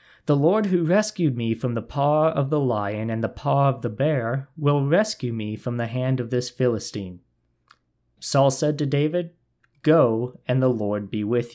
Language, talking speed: English, 185 wpm